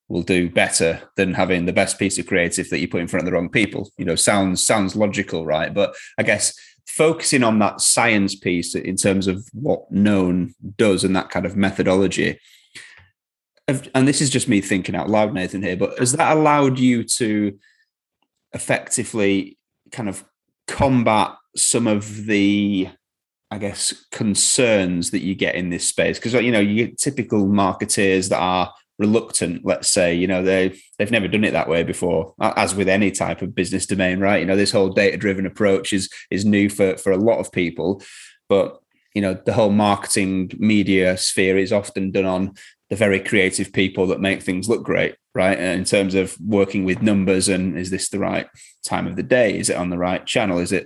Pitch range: 95-105 Hz